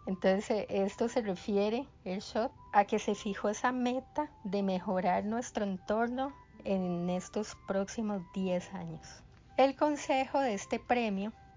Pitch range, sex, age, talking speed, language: 185-230 Hz, female, 30-49, 130 wpm, Spanish